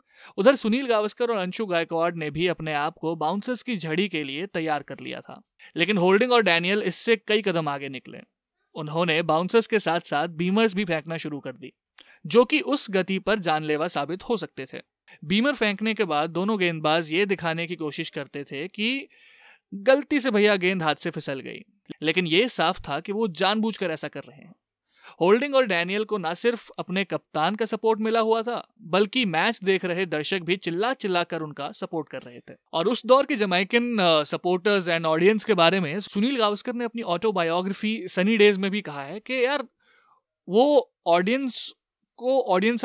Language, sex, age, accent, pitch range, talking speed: Hindi, male, 30-49, native, 165-225 Hz, 145 wpm